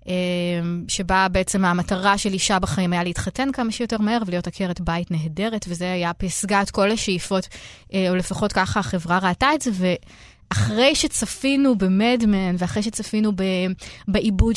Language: Hebrew